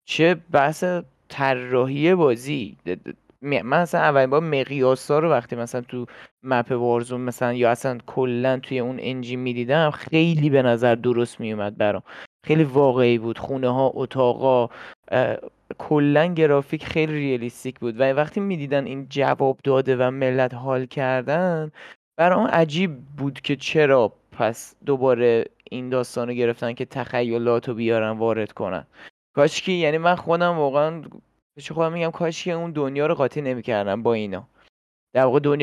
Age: 20-39